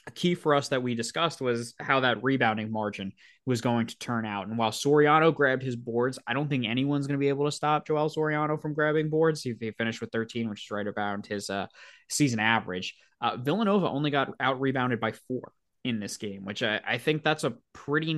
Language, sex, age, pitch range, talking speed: English, male, 20-39, 115-140 Hz, 225 wpm